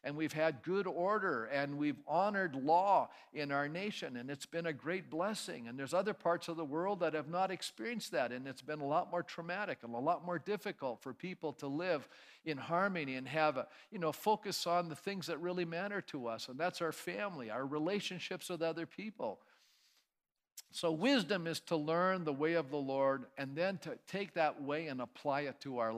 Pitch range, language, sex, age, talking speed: 140-185 Hz, English, male, 50-69, 210 wpm